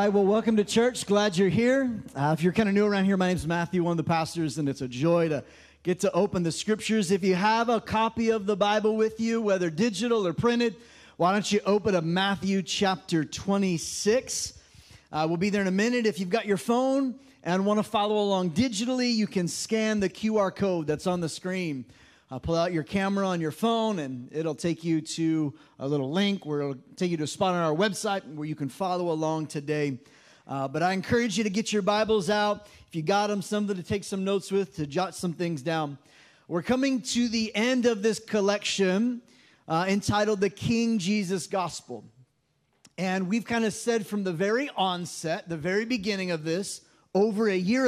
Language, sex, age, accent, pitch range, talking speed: English, male, 30-49, American, 165-215 Hz, 215 wpm